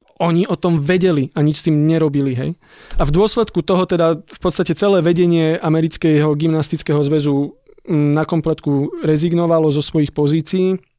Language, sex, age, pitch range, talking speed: Slovak, male, 20-39, 150-170 Hz, 155 wpm